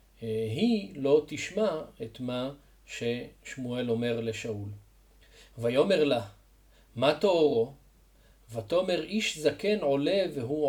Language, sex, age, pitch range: Hebrew, male, 40-59, 115-165 Hz